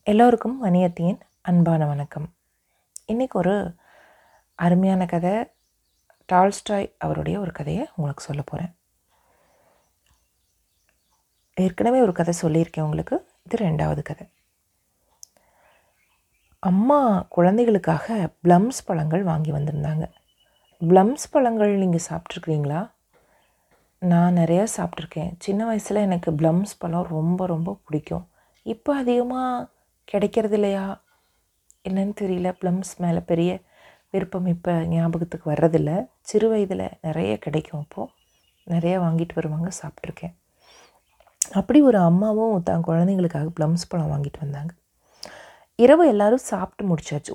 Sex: female